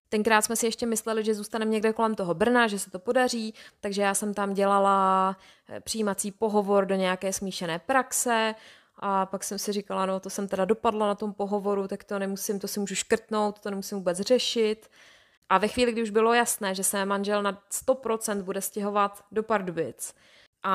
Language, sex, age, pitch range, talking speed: Czech, female, 20-39, 195-225 Hz, 195 wpm